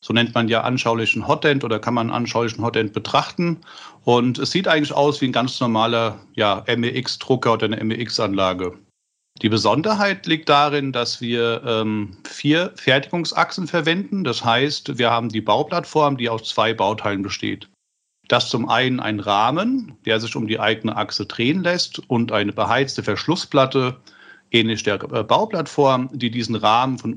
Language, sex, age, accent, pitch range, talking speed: German, male, 40-59, German, 110-145 Hz, 155 wpm